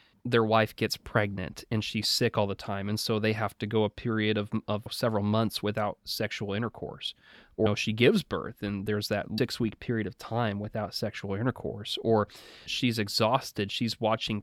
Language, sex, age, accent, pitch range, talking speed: English, male, 30-49, American, 110-140 Hz, 195 wpm